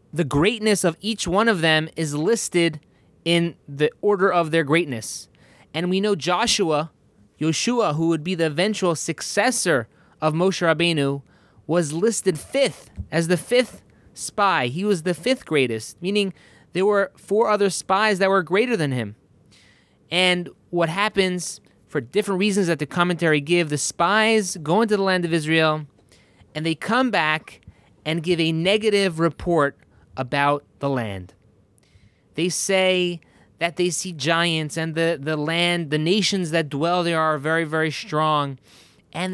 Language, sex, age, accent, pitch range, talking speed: English, male, 20-39, American, 150-185 Hz, 155 wpm